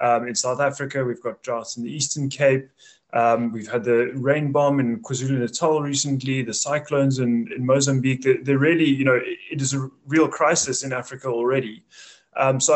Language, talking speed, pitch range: English, 190 wpm, 125-145 Hz